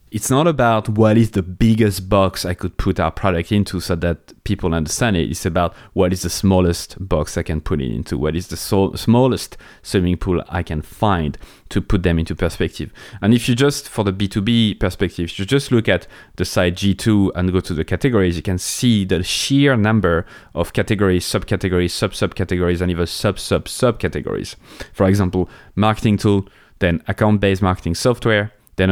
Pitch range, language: 85-105 Hz, English